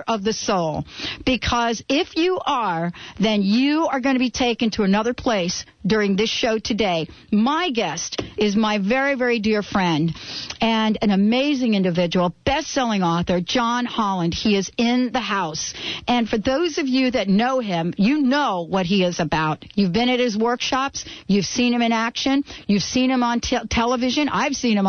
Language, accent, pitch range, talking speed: English, American, 195-255 Hz, 180 wpm